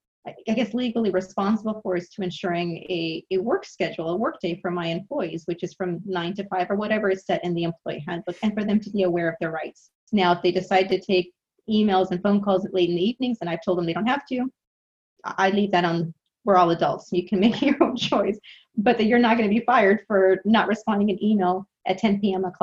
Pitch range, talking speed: 175-220 Hz, 245 wpm